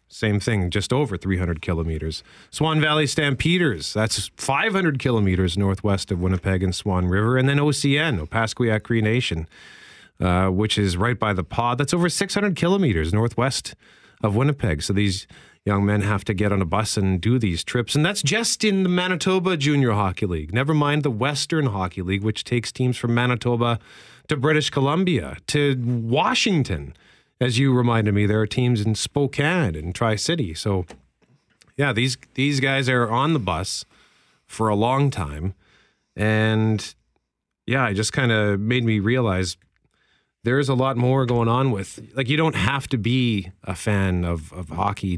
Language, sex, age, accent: English, male, 40-59, American